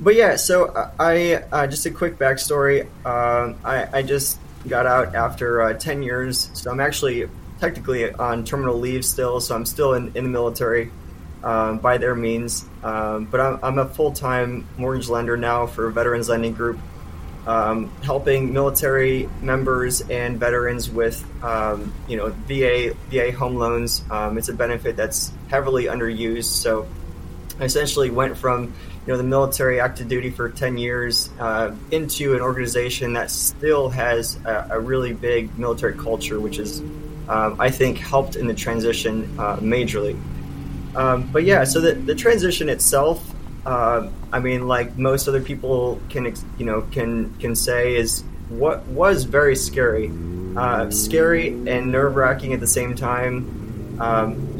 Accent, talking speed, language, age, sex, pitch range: American, 160 wpm, English, 20-39, male, 115-130 Hz